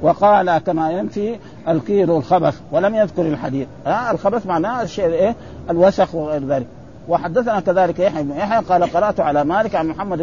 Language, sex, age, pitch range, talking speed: Arabic, male, 50-69, 160-200 Hz, 155 wpm